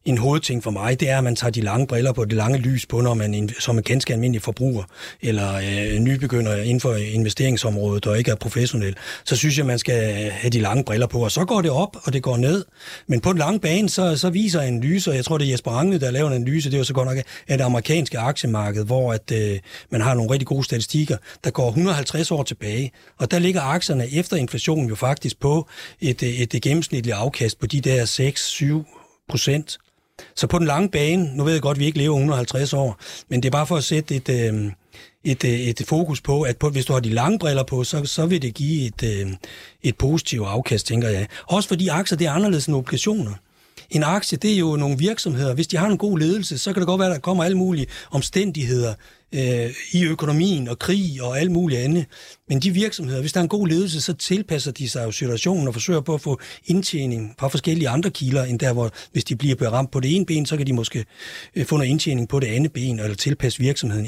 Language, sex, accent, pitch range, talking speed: Danish, male, native, 120-160 Hz, 235 wpm